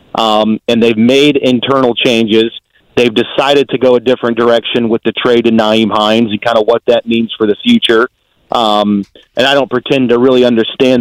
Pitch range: 115-140 Hz